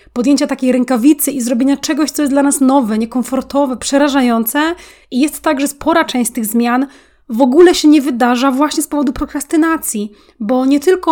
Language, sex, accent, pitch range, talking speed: Polish, female, native, 245-285 Hz, 180 wpm